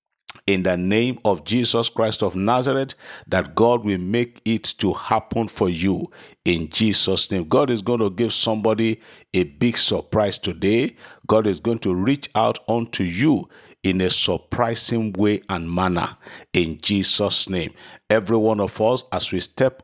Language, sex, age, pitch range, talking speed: English, male, 50-69, 95-120 Hz, 165 wpm